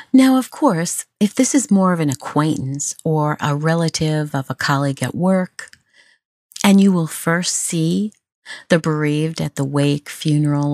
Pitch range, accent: 140-190 Hz, American